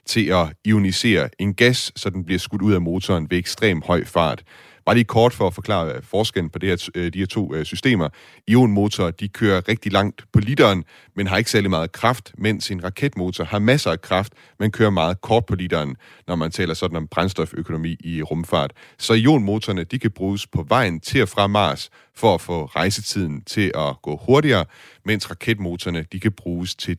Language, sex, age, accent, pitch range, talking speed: Danish, male, 30-49, native, 85-110 Hz, 200 wpm